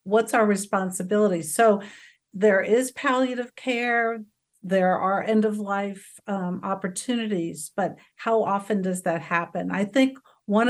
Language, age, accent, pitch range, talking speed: English, 50-69, American, 180-215 Hz, 125 wpm